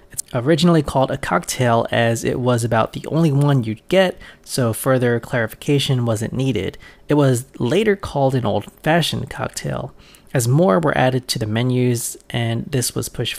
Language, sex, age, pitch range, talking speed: English, male, 20-39, 115-145 Hz, 165 wpm